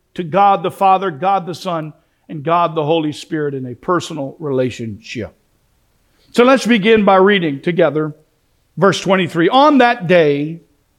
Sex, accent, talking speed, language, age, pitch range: male, American, 145 wpm, English, 50-69, 175-240 Hz